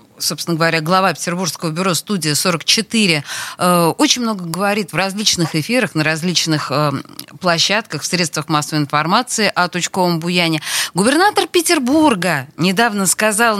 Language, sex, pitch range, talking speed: Russian, female, 180-245 Hz, 120 wpm